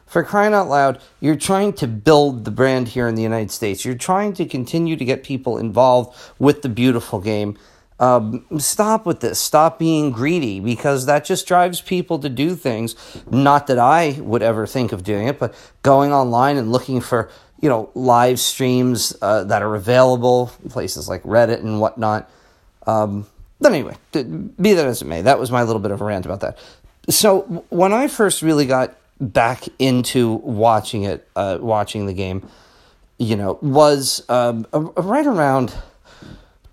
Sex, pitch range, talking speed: male, 115-150 Hz, 180 wpm